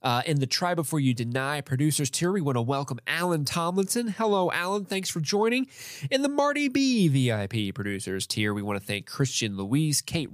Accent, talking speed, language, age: American, 195 wpm, English, 20-39